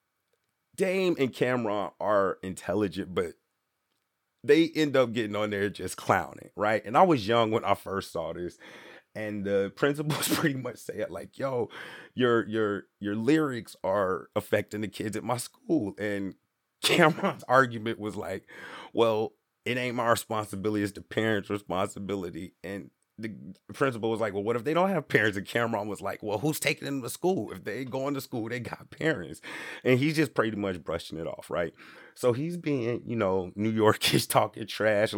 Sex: male